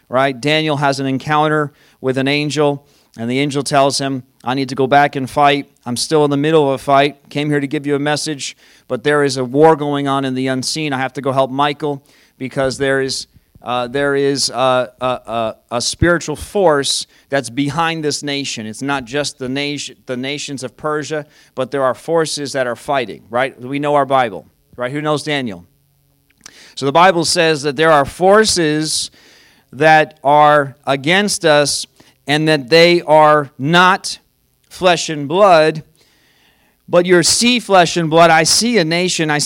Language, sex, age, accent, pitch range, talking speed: English, male, 40-59, American, 135-155 Hz, 185 wpm